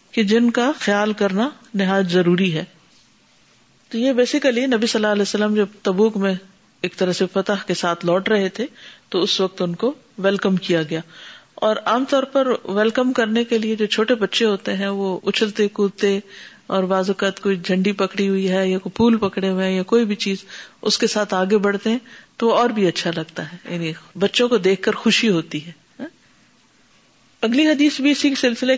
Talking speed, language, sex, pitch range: 200 wpm, Urdu, female, 195-250 Hz